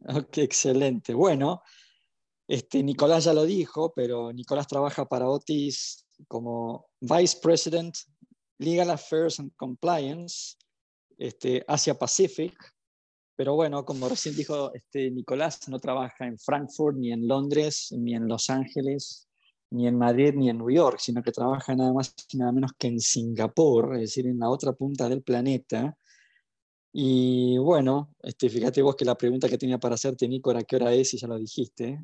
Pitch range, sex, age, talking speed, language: 115-140 Hz, male, 20-39, 165 wpm, Spanish